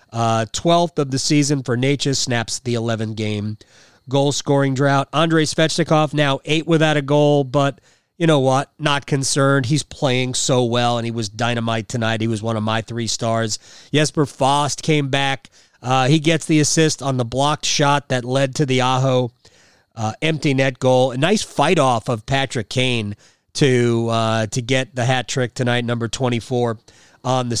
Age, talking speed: 30-49, 185 wpm